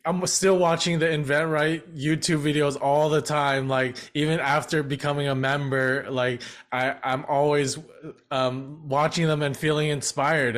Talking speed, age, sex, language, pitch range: 155 wpm, 20-39, male, English, 125-155 Hz